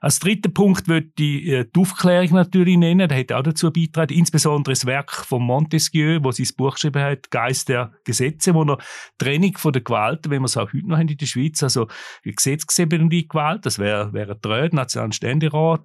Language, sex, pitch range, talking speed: German, male, 125-160 Hz, 210 wpm